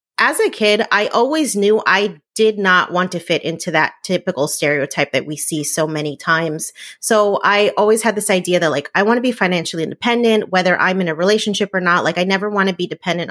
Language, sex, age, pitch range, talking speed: English, female, 30-49, 160-195 Hz, 225 wpm